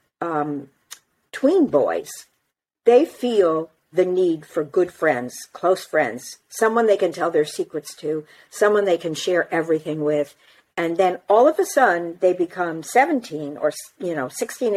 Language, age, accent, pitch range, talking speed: English, 50-69, American, 160-225 Hz, 155 wpm